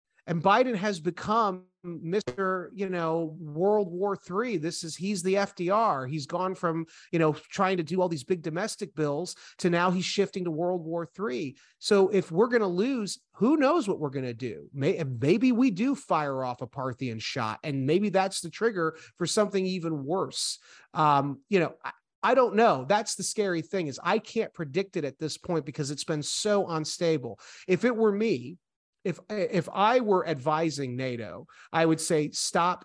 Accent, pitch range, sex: American, 140-195 Hz, male